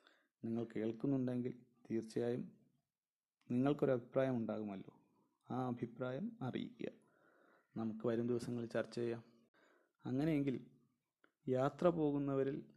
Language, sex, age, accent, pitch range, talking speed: Malayalam, male, 30-49, native, 115-130 Hz, 80 wpm